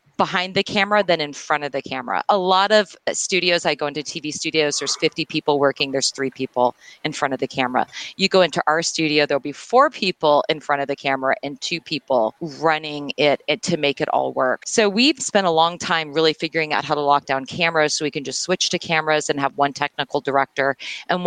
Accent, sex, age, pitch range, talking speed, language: American, female, 30-49, 150-200 Hz, 230 wpm, English